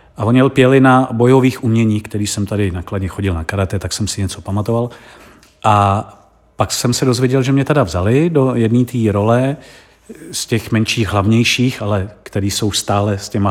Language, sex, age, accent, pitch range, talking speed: Czech, male, 40-59, native, 100-120 Hz, 180 wpm